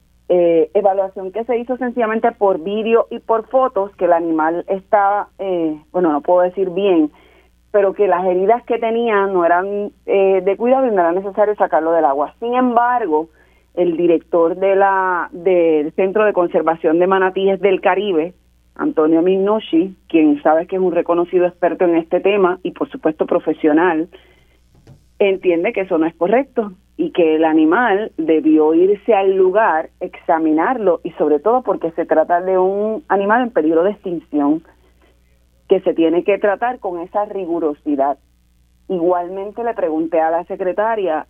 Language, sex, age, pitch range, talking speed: Spanish, female, 30-49, 160-195 Hz, 160 wpm